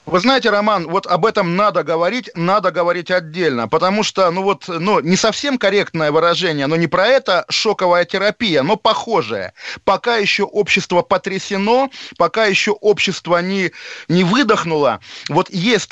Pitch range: 180-215 Hz